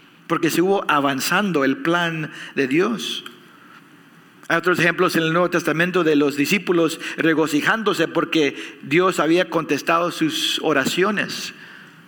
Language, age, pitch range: English, 50-69, 155-200 Hz